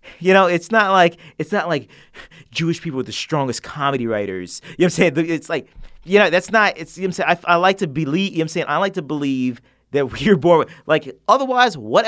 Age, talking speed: 30-49, 265 wpm